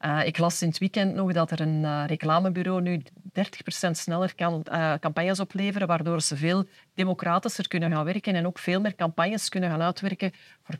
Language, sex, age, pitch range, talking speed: Dutch, female, 40-59, 165-205 Hz, 195 wpm